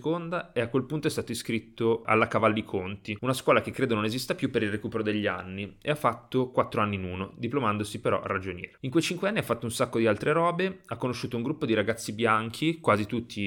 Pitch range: 105-130 Hz